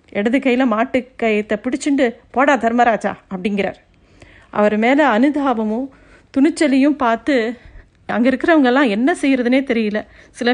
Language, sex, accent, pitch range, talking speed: Tamil, female, native, 230-290 Hz, 100 wpm